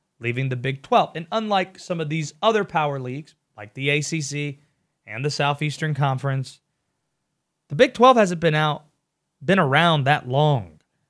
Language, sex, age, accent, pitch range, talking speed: English, male, 30-49, American, 135-175 Hz, 155 wpm